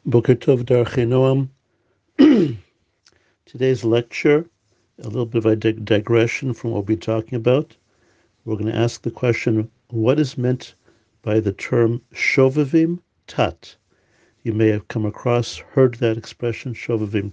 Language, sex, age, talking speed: English, male, 50-69, 140 wpm